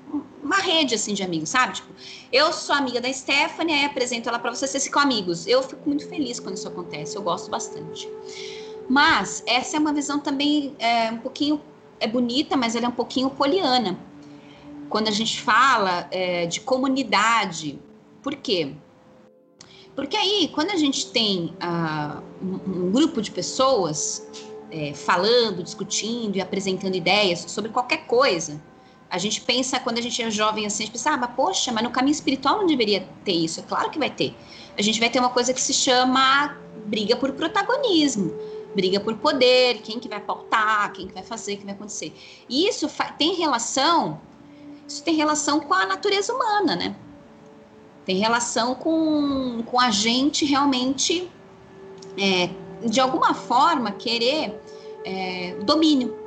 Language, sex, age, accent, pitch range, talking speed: Portuguese, female, 20-39, Brazilian, 200-290 Hz, 165 wpm